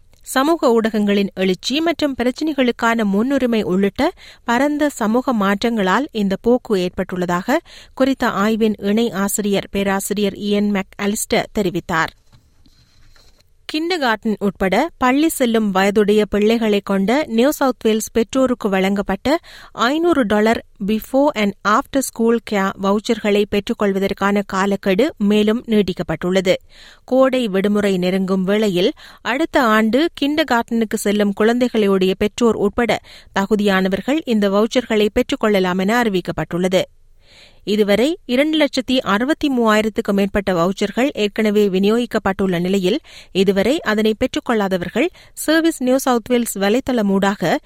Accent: native